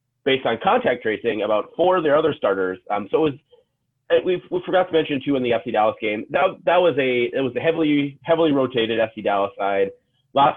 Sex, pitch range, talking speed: male, 110-180 Hz, 225 wpm